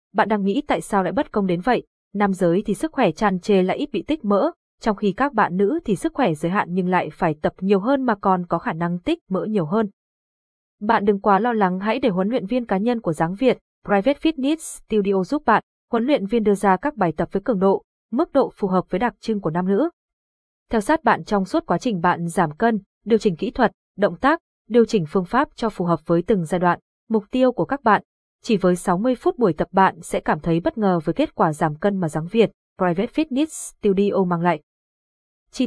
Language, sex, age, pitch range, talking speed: Vietnamese, female, 20-39, 185-245 Hz, 245 wpm